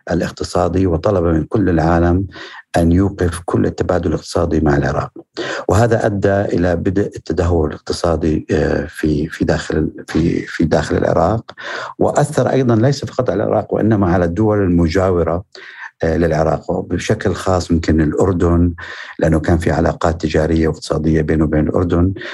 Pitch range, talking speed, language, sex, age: 85-105 Hz, 130 wpm, Arabic, male, 60-79